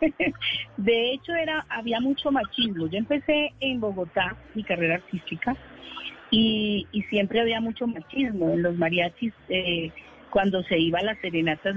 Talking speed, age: 150 wpm, 40-59